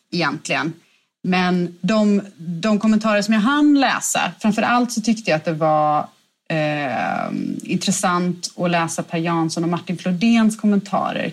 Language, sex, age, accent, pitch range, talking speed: Swedish, female, 30-49, native, 165-215 Hz, 140 wpm